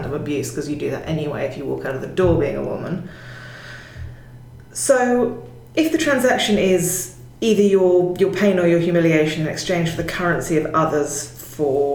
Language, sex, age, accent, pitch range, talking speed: English, female, 30-49, British, 150-180 Hz, 180 wpm